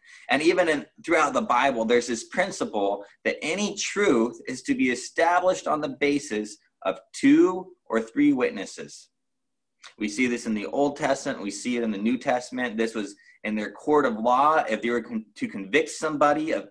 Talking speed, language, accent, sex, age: 185 wpm, English, American, male, 30-49